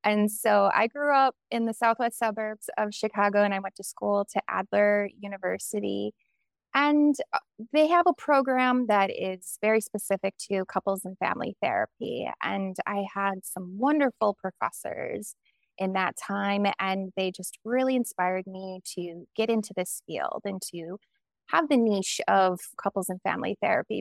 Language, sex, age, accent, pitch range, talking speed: English, female, 20-39, American, 190-230 Hz, 155 wpm